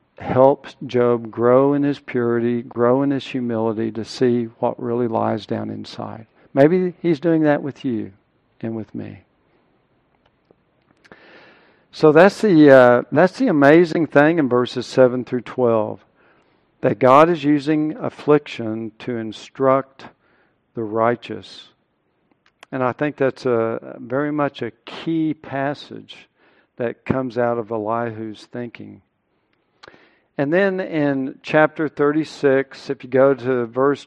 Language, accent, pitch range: English, American, 120-145 Hz